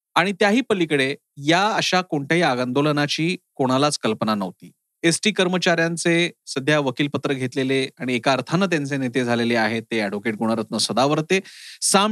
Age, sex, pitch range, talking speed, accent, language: 30-49, male, 130-170 Hz, 140 wpm, native, Marathi